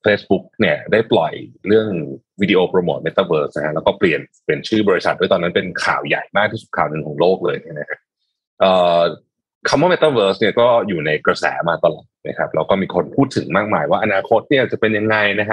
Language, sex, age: Thai, male, 30-49